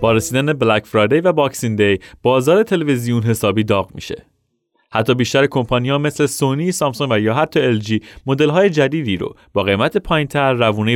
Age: 30-49